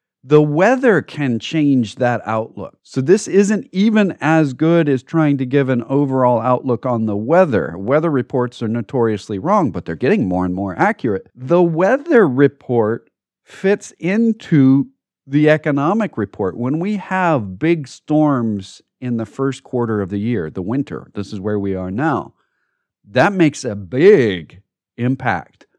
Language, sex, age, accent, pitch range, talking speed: English, male, 40-59, American, 105-150 Hz, 155 wpm